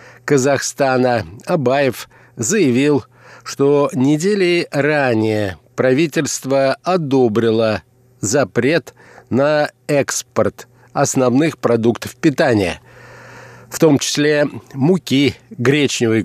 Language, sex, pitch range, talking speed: Russian, male, 125-150 Hz, 70 wpm